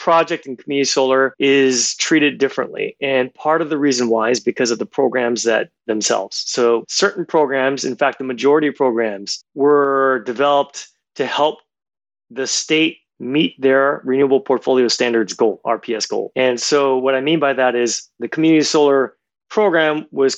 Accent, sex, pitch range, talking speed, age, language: American, male, 125-150 Hz, 165 wpm, 30-49, English